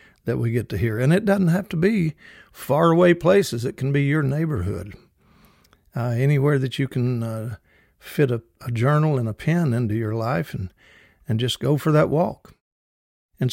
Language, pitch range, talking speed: English, 110-140 Hz, 190 wpm